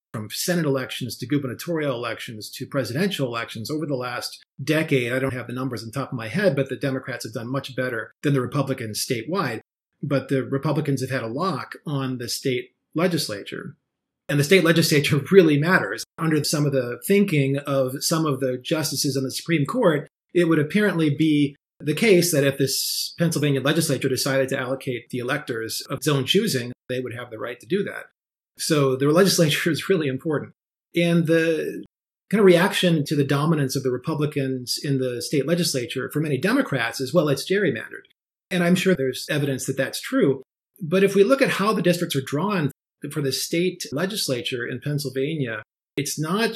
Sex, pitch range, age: male, 130-165 Hz, 30-49